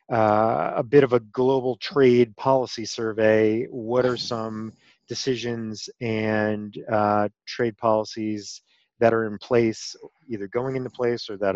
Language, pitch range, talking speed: English, 110-125 Hz, 140 wpm